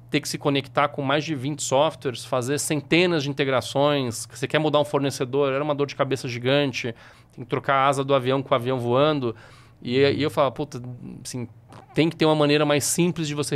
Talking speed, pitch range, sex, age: 220 wpm, 115-140 Hz, male, 40-59